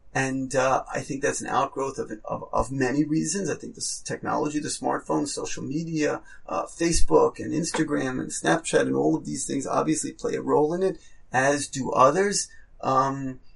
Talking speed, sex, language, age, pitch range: 180 wpm, male, English, 30-49, 135-155 Hz